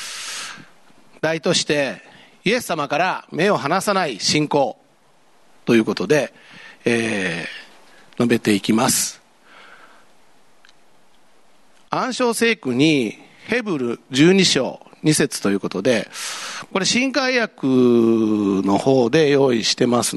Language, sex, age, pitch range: Japanese, male, 50-69, 125-165 Hz